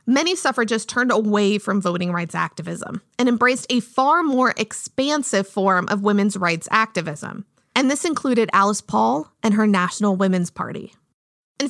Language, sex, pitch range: English, female, 200-250 Hz